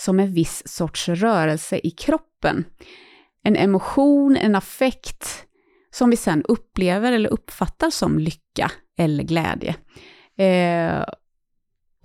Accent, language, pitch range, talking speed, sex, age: native, Swedish, 170-240 Hz, 110 wpm, female, 30-49